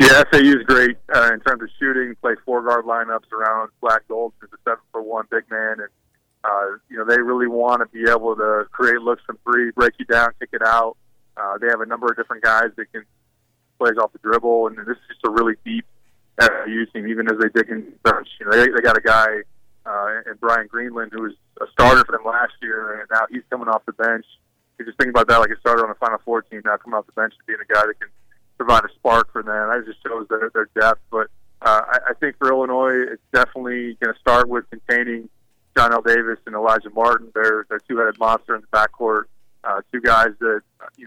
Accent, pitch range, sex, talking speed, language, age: American, 110-120 Hz, male, 240 wpm, English, 20-39